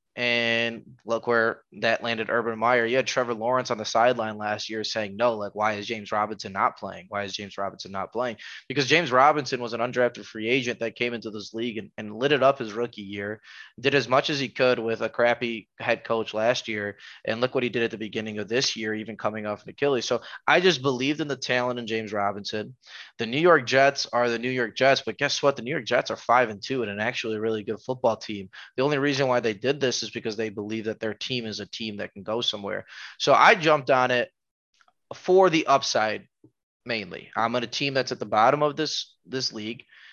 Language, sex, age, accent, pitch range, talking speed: English, male, 20-39, American, 110-130 Hz, 240 wpm